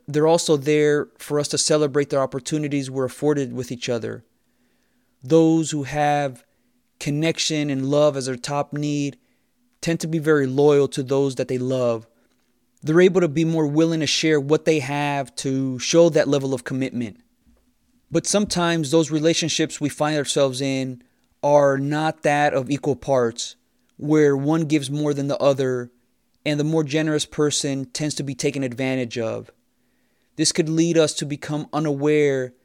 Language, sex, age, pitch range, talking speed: English, male, 20-39, 135-155 Hz, 165 wpm